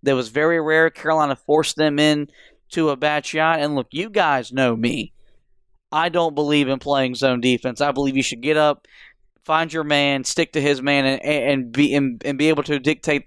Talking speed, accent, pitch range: 200 wpm, American, 135-155 Hz